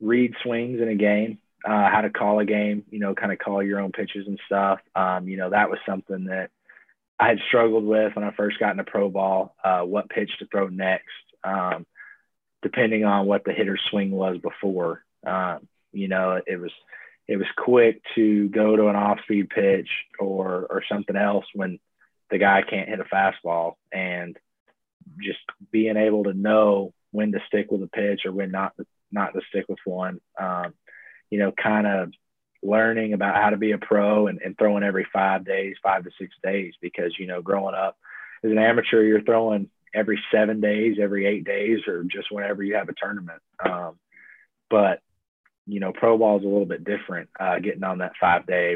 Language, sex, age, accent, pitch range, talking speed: English, male, 20-39, American, 95-105 Hz, 200 wpm